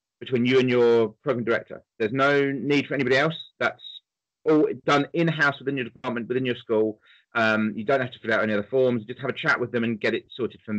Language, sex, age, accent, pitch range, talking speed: English, male, 30-49, British, 120-150 Hz, 240 wpm